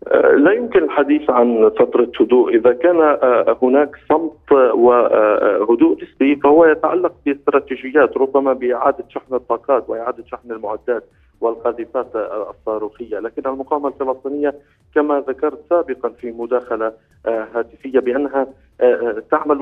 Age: 40-59